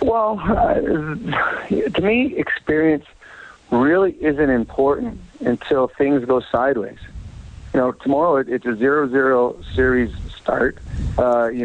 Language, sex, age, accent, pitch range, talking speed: English, male, 50-69, American, 120-145 Hz, 115 wpm